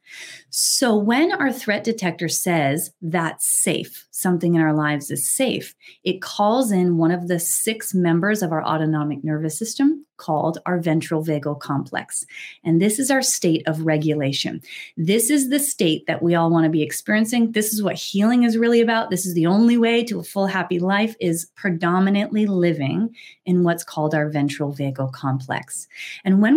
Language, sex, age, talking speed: English, female, 30-49, 180 wpm